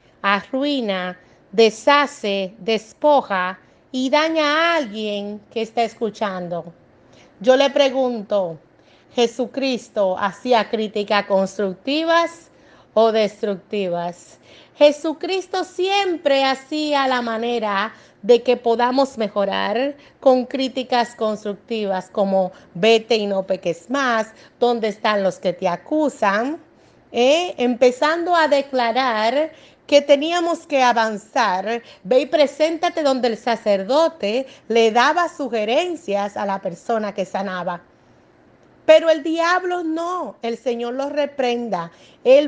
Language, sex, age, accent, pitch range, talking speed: Spanish, female, 40-59, American, 220-305 Hz, 105 wpm